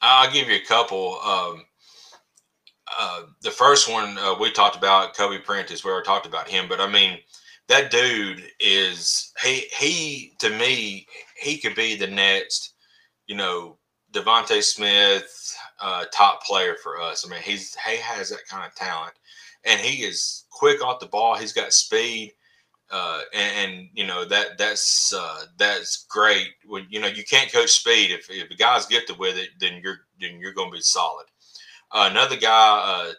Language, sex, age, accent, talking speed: English, male, 30-49, American, 180 wpm